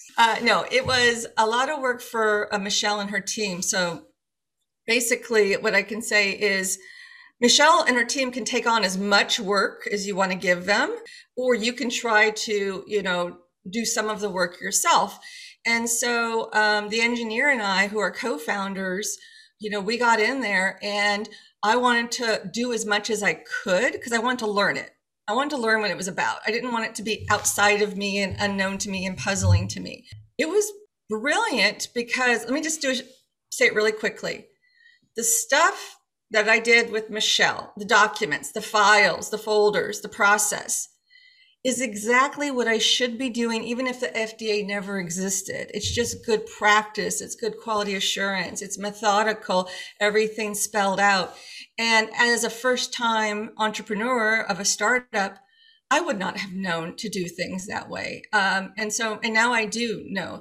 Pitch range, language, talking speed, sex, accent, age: 205-240 Hz, English, 185 wpm, female, American, 40-59